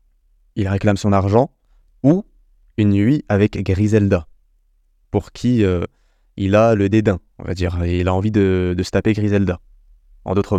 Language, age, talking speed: French, 20-39, 165 wpm